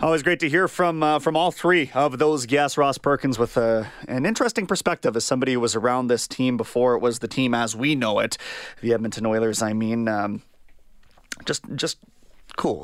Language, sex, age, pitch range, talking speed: English, male, 30-49, 135-185 Hz, 205 wpm